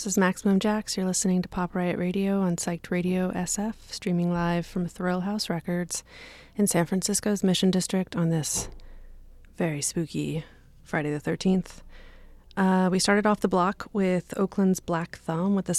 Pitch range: 165-185 Hz